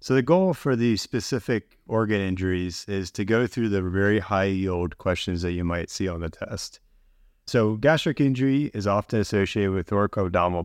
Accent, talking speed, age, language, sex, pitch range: American, 180 wpm, 30-49, English, male, 90-120 Hz